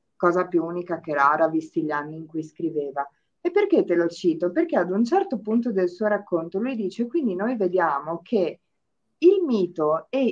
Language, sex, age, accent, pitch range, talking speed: Italian, female, 50-69, native, 170-220 Hz, 190 wpm